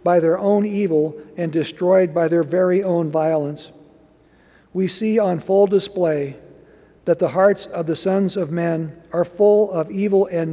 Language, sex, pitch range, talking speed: English, male, 160-185 Hz, 165 wpm